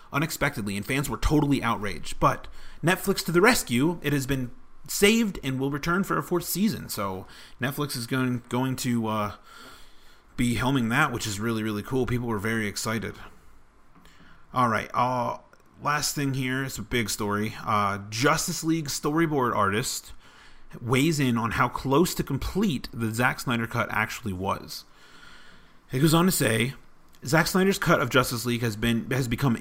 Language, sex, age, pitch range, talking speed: English, male, 30-49, 105-140 Hz, 170 wpm